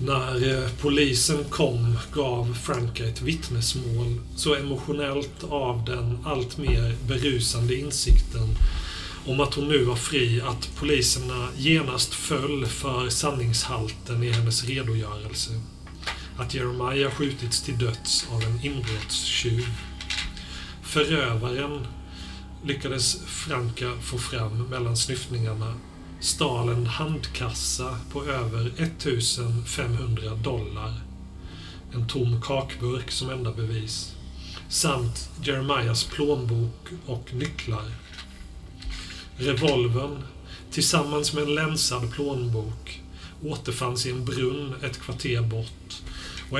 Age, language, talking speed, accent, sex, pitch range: 40-59, Swedish, 100 wpm, native, male, 110-140 Hz